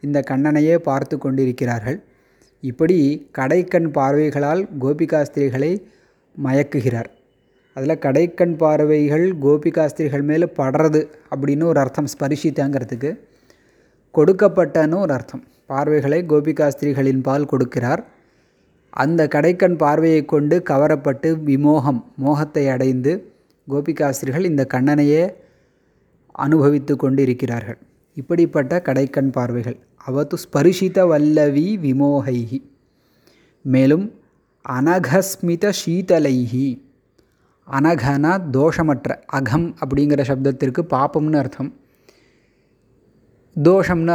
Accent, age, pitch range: native, 20-39, 135-160 Hz